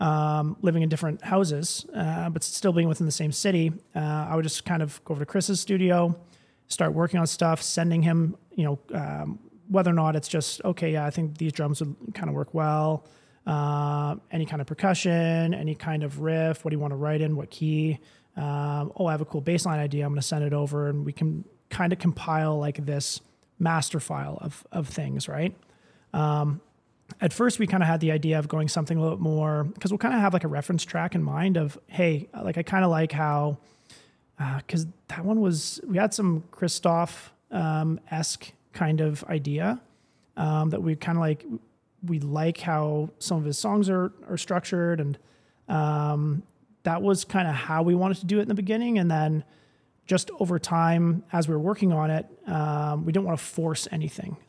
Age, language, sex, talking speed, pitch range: 30-49, English, male, 215 wpm, 150-175 Hz